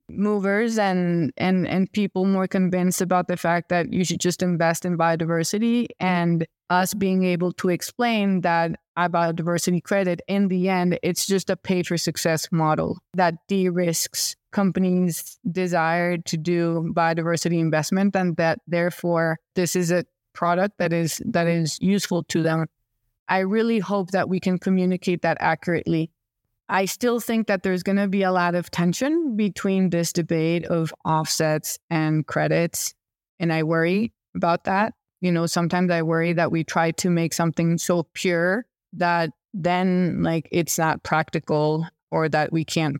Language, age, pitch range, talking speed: English, 20-39, 165-190 Hz, 160 wpm